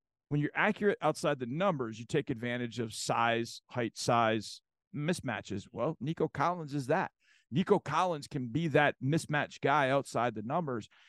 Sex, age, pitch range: male, 50-69, 120-150 Hz